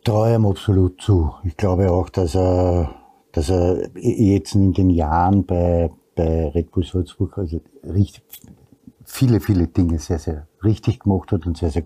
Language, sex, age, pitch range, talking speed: German, male, 60-79, 90-110 Hz, 170 wpm